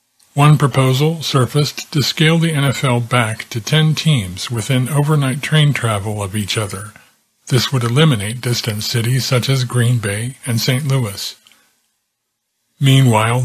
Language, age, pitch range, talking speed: English, 50-69, 115-140 Hz, 140 wpm